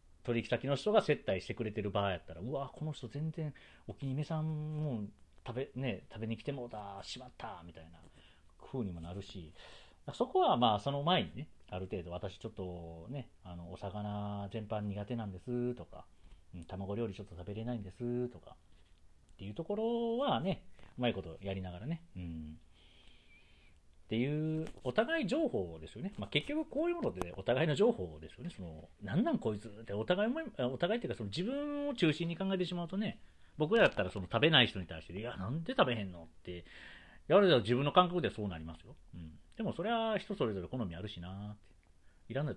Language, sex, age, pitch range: Japanese, male, 40-59, 85-145 Hz